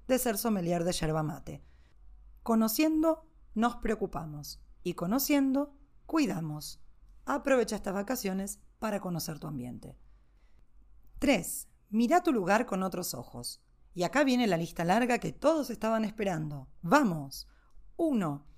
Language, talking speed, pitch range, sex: Spanish, 125 wpm, 165-245 Hz, female